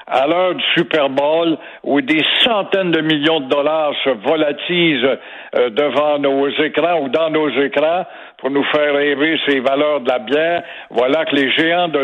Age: 60-79